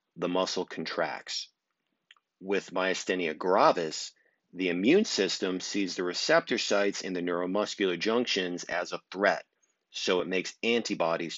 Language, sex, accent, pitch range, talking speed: English, male, American, 90-110 Hz, 125 wpm